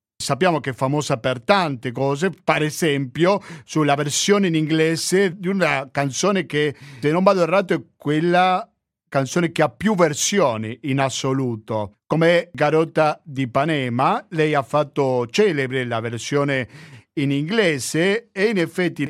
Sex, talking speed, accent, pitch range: male, 140 wpm, native, 130-170 Hz